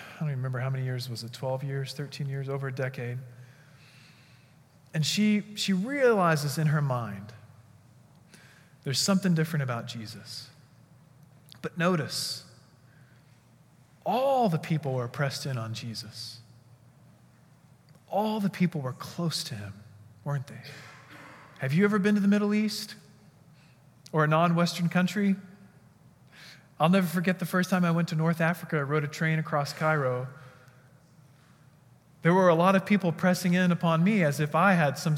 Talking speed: 155 wpm